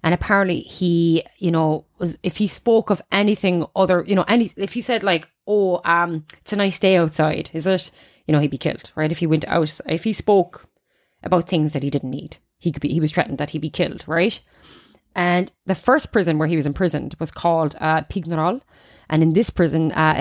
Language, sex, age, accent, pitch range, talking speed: English, female, 20-39, Irish, 155-190 Hz, 225 wpm